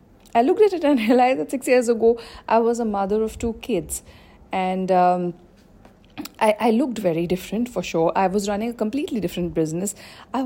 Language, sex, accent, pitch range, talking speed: English, female, Indian, 185-265 Hz, 195 wpm